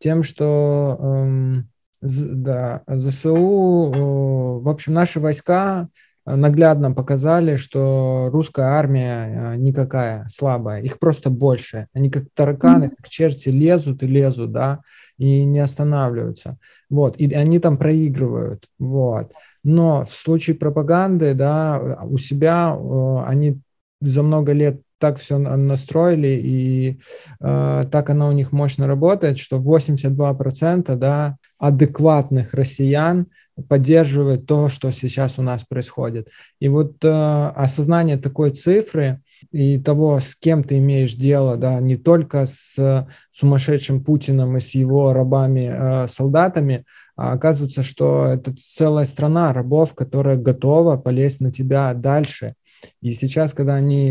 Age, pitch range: 20-39, 130-150 Hz